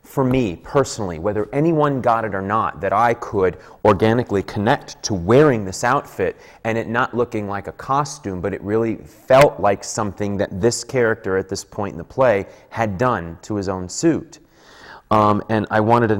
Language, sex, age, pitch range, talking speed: English, male, 30-49, 95-115 Hz, 190 wpm